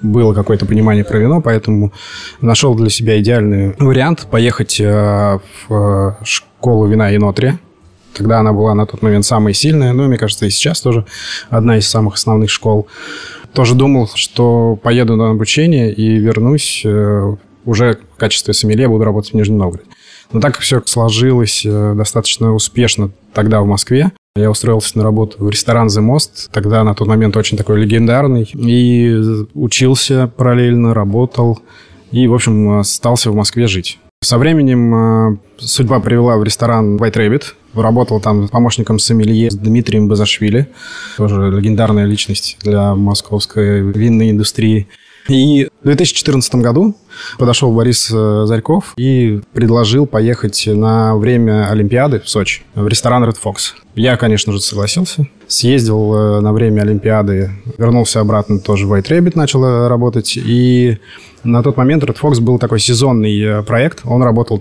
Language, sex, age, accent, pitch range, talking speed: Russian, male, 20-39, native, 105-120 Hz, 145 wpm